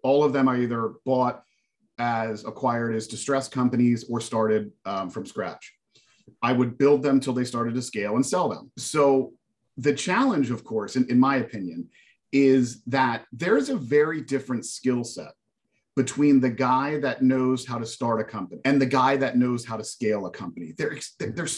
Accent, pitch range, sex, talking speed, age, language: American, 120-145 Hz, male, 185 wpm, 40-59, English